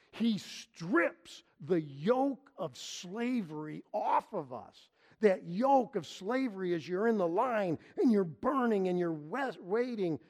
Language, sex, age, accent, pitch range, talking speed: English, male, 50-69, American, 125-190 Hz, 140 wpm